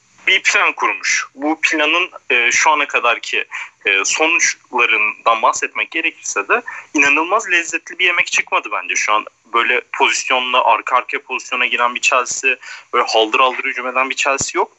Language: Turkish